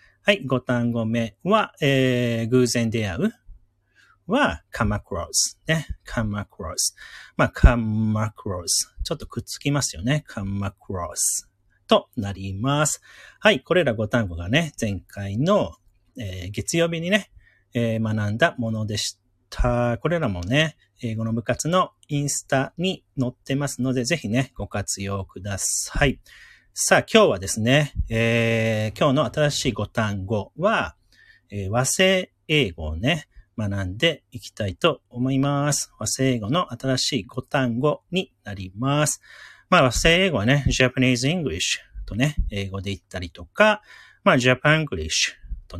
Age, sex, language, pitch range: 40-59, male, Japanese, 105-145 Hz